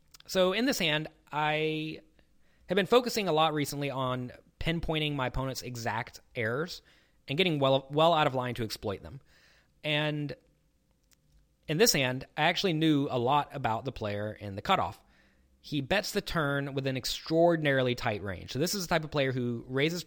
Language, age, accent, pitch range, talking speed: English, 30-49, American, 115-155 Hz, 180 wpm